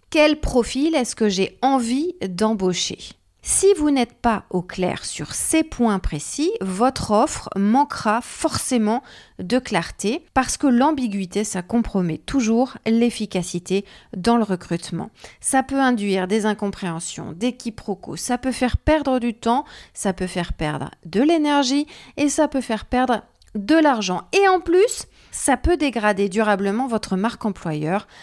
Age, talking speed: 40-59, 145 wpm